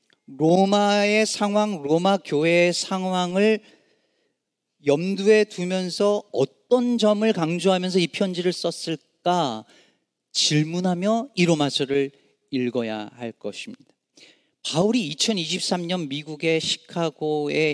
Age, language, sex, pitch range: 40-59, Korean, male, 160-220 Hz